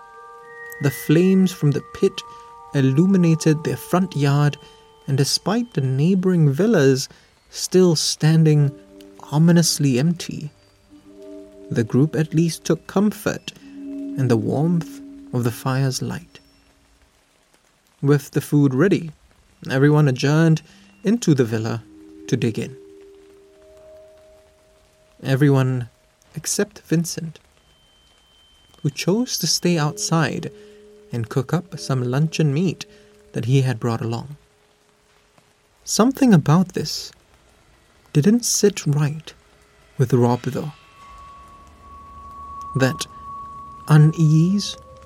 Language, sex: English, male